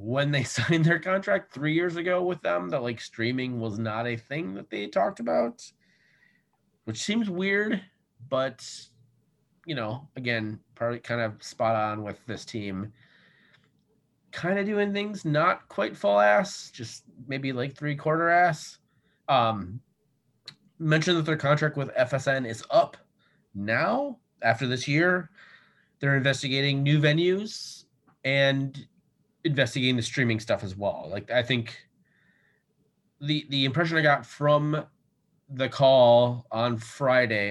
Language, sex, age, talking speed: English, male, 30-49, 140 wpm